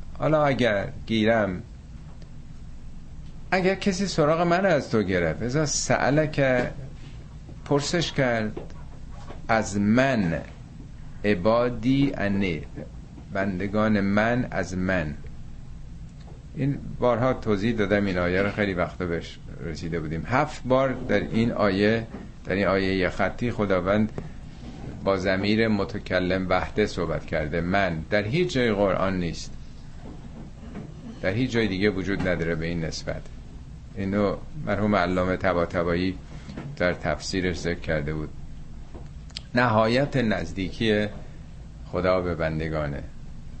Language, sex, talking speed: Persian, male, 110 wpm